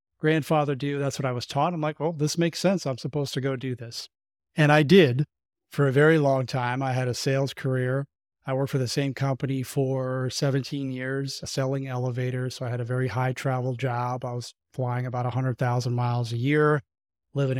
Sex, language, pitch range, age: male, English, 125-140 Hz, 30-49